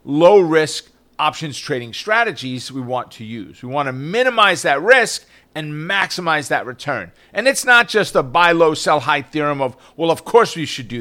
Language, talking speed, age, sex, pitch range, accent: English, 195 wpm, 40-59, male, 150-220 Hz, American